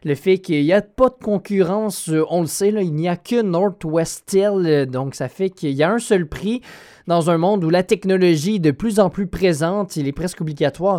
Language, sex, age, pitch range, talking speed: French, male, 20-39, 160-205 Hz, 235 wpm